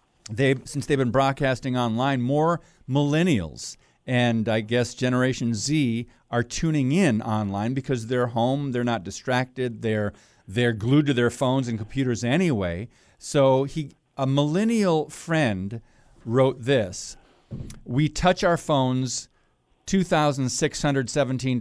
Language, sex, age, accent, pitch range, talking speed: English, male, 50-69, American, 115-140 Hz, 120 wpm